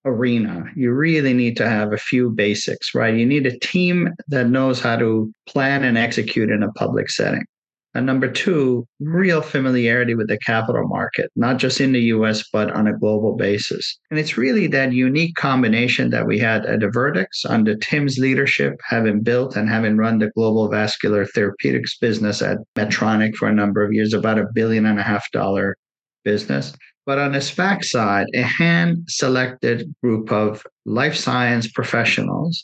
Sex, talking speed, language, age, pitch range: male, 175 wpm, English, 50-69, 110-135 Hz